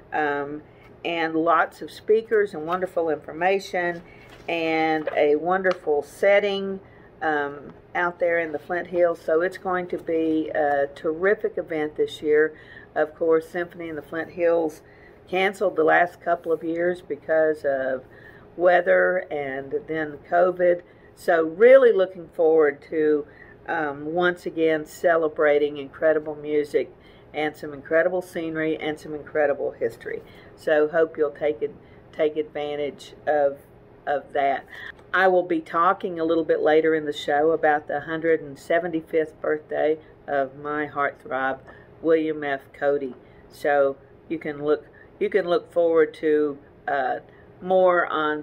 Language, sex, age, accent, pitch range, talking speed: English, female, 50-69, American, 150-175 Hz, 135 wpm